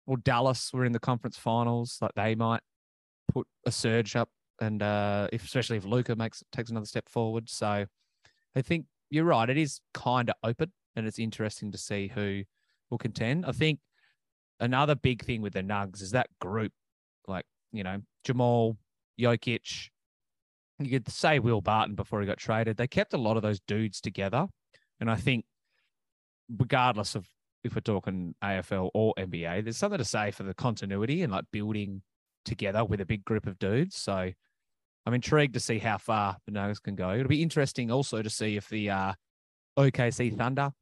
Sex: male